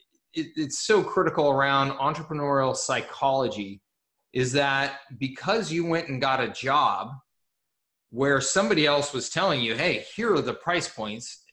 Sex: male